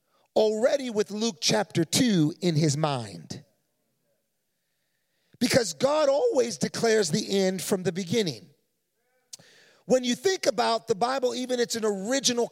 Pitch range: 165-235 Hz